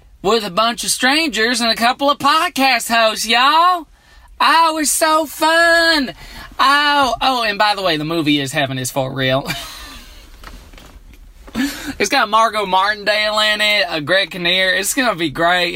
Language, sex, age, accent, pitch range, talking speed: English, male, 20-39, American, 155-210 Hz, 165 wpm